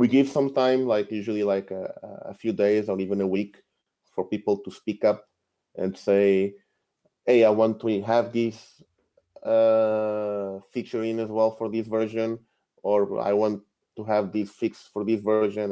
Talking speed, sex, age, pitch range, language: 175 wpm, male, 20-39, 95-110 Hz, English